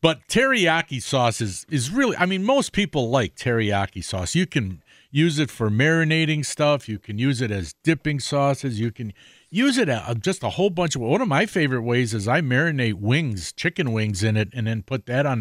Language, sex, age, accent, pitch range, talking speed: English, male, 50-69, American, 110-150 Hz, 205 wpm